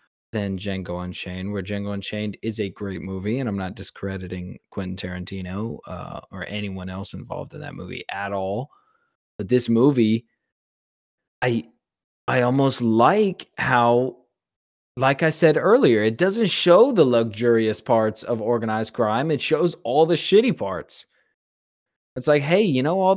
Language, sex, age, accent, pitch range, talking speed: English, male, 20-39, American, 105-135 Hz, 155 wpm